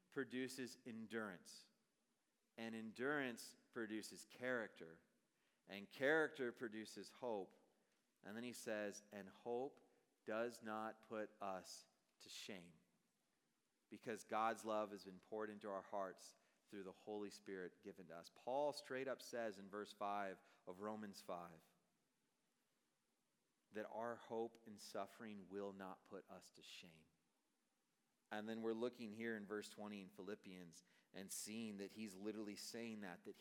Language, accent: English, American